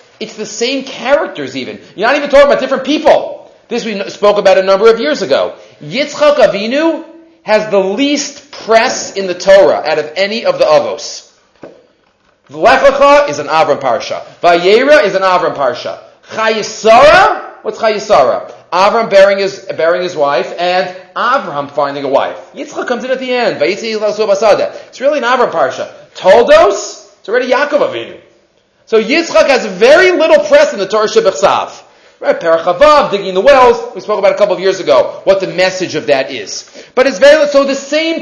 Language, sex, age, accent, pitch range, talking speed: English, male, 40-59, Canadian, 195-285 Hz, 175 wpm